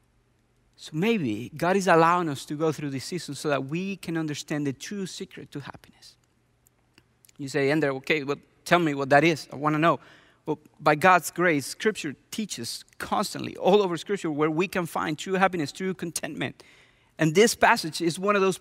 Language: English